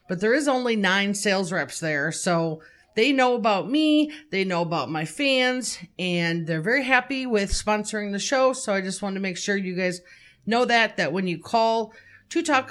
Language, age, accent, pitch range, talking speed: English, 40-59, American, 170-230 Hz, 205 wpm